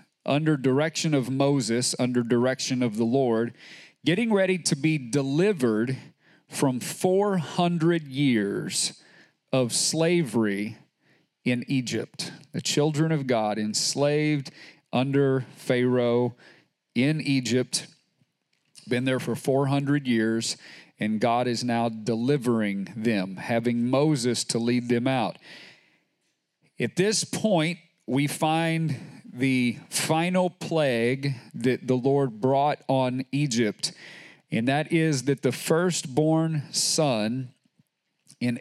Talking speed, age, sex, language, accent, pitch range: 105 wpm, 40-59, male, English, American, 120-150 Hz